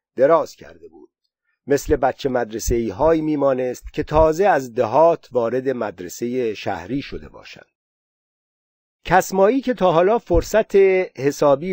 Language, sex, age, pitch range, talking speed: Persian, male, 50-69, 125-170 Hz, 120 wpm